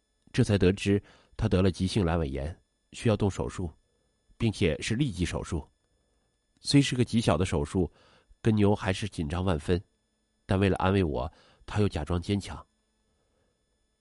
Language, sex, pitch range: Chinese, male, 85-110 Hz